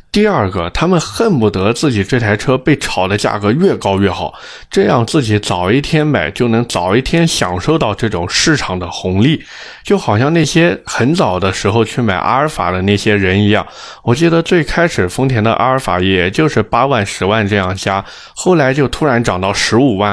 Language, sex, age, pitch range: Chinese, male, 20-39, 100-140 Hz